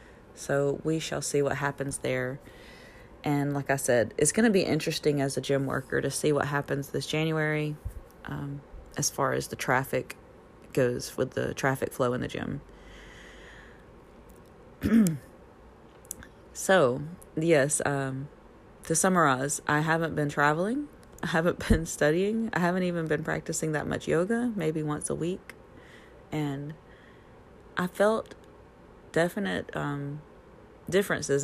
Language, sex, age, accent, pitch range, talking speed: English, female, 30-49, American, 140-165 Hz, 135 wpm